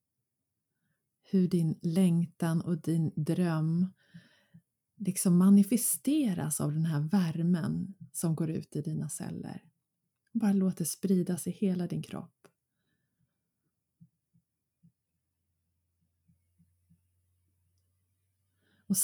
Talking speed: 85 wpm